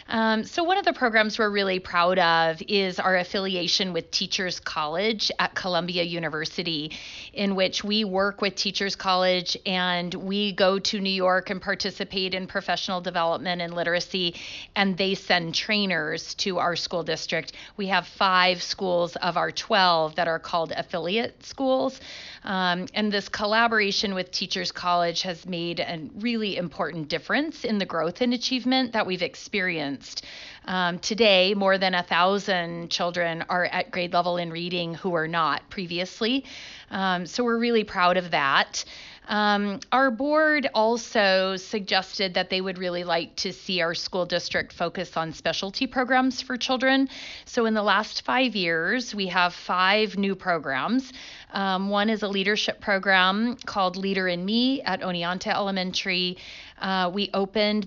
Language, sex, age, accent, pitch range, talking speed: English, female, 30-49, American, 175-205 Hz, 160 wpm